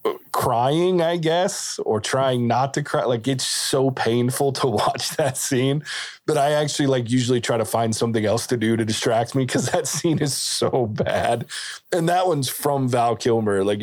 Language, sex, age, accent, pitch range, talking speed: English, male, 20-39, American, 105-135 Hz, 190 wpm